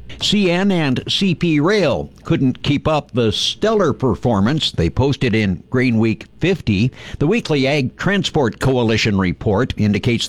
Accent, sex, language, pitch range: American, male, English, 100-130 Hz